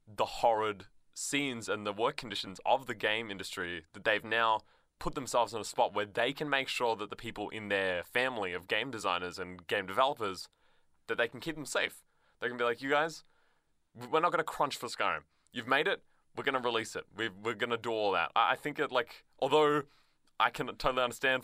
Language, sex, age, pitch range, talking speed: English, male, 20-39, 100-135 Hz, 220 wpm